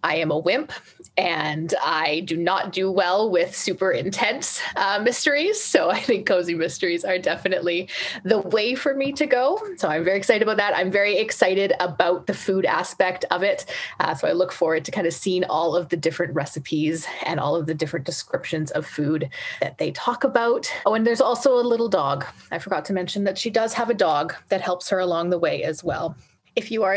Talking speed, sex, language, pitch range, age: 215 wpm, female, English, 180-260 Hz, 30-49